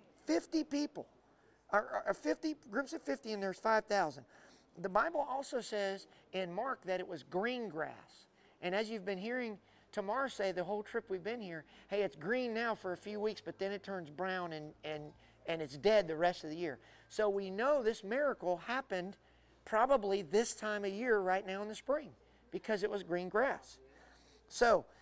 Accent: American